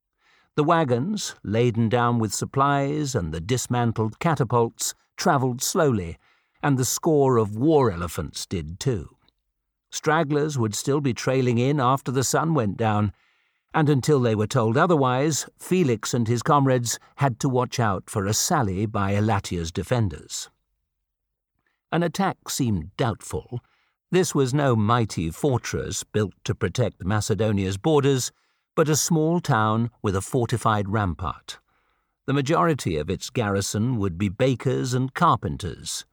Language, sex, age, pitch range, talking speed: English, male, 50-69, 105-140 Hz, 140 wpm